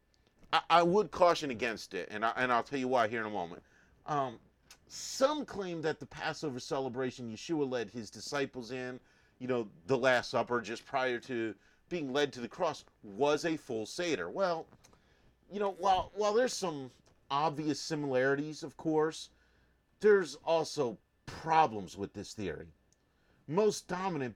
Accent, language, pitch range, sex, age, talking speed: American, English, 120-160 Hz, male, 40-59, 155 wpm